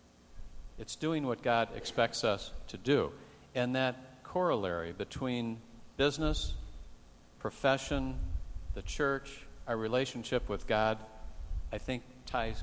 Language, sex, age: English, male, 50-69